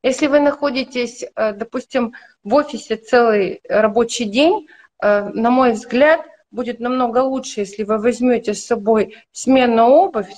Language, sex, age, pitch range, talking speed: Russian, female, 30-49, 210-255 Hz, 125 wpm